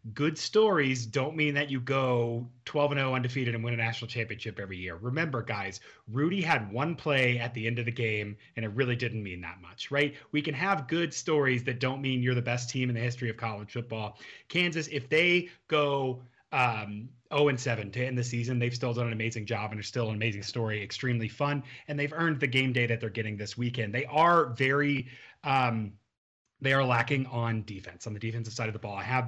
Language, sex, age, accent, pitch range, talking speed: English, male, 30-49, American, 115-140 Hz, 230 wpm